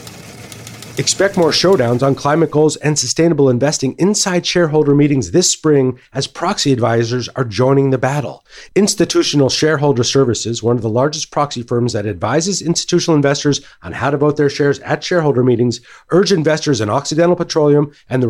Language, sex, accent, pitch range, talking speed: English, male, American, 125-150 Hz, 165 wpm